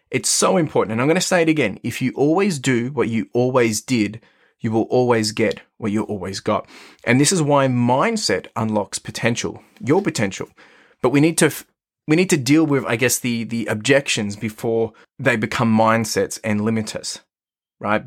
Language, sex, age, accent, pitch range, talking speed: English, male, 20-39, Australian, 110-140 Hz, 190 wpm